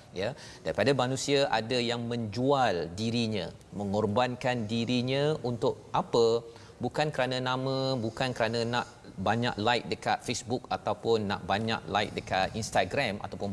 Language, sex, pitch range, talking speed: Malayalam, male, 110-135 Hz, 125 wpm